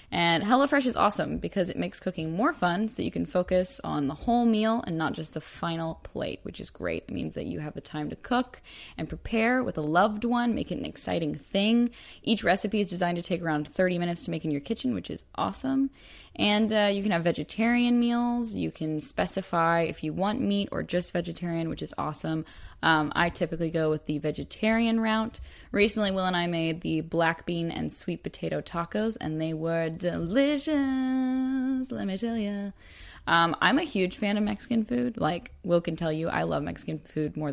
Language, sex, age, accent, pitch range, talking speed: English, female, 10-29, American, 160-230 Hz, 210 wpm